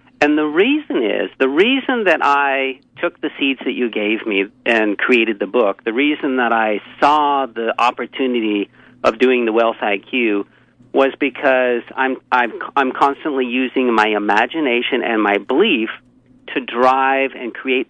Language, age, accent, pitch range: English, 50-69, American, 115-145 Hz